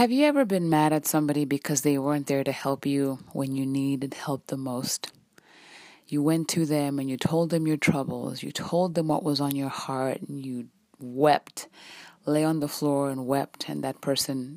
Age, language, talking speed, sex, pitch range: 20-39, English, 205 wpm, female, 140-165 Hz